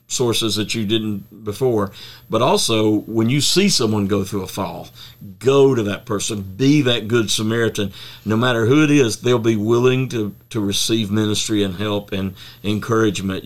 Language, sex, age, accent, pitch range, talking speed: English, male, 50-69, American, 100-120 Hz, 175 wpm